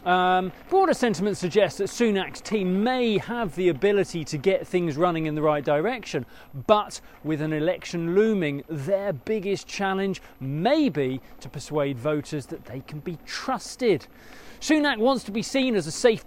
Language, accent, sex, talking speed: English, British, male, 165 wpm